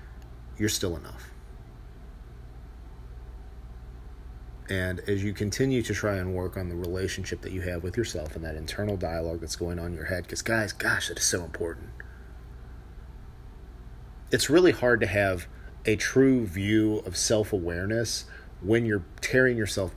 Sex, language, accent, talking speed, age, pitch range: male, English, American, 150 wpm, 40-59, 85-120 Hz